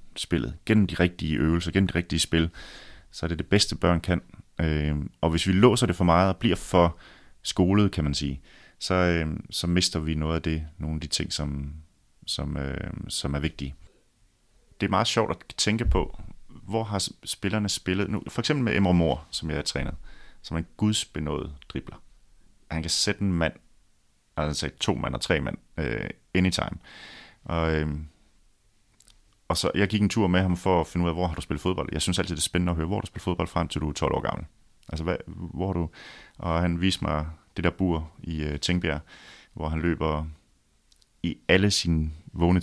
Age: 30-49